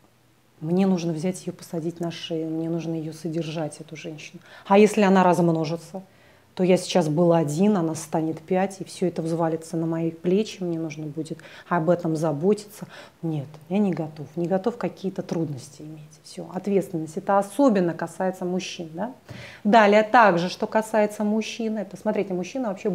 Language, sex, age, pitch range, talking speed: Russian, female, 30-49, 165-200 Hz, 160 wpm